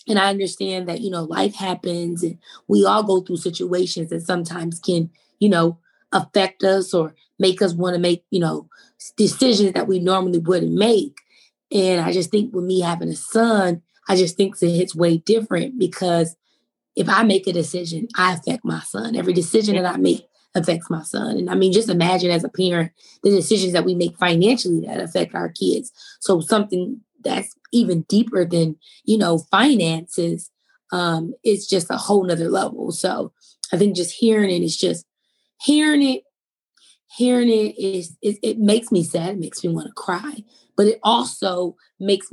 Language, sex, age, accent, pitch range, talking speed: English, female, 20-39, American, 170-205 Hz, 185 wpm